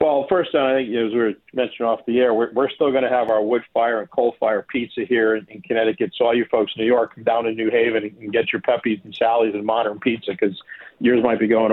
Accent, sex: American, male